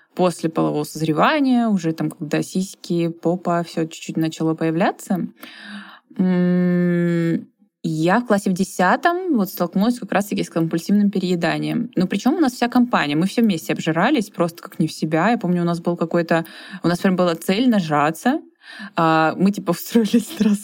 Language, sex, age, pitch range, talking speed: Russian, female, 20-39, 165-205 Hz, 160 wpm